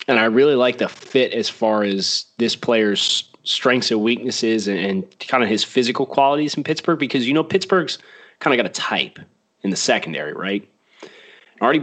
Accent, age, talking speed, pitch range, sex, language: American, 30-49, 190 wpm, 105-140 Hz, male, English